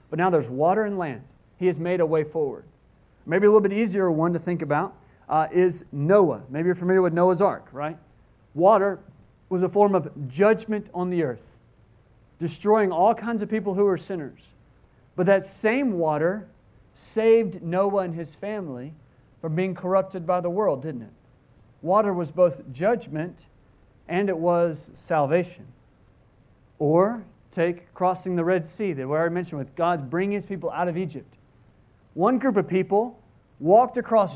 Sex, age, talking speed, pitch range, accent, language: male, 40-59, 170 wpm, 150-205 Hz, American, English